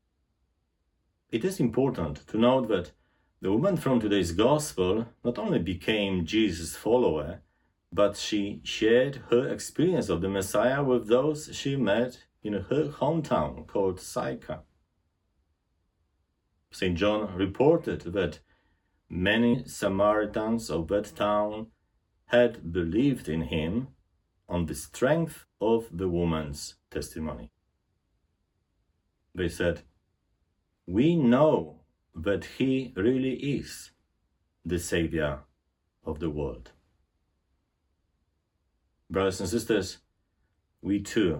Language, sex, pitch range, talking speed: English, male, 80-120 Hz, 105 wpm